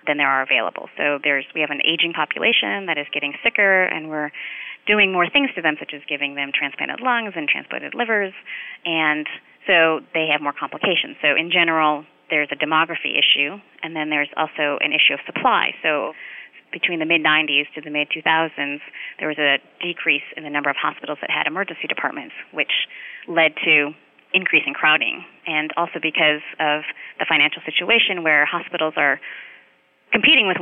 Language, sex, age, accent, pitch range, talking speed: English, female, 30-49, American, 150-165 Hz, 175 wpm